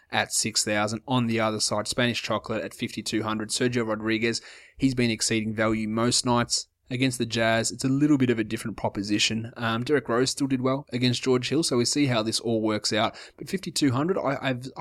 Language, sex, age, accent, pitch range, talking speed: English, male, 20-39, Australian, 110-125 Hz, 195 wpm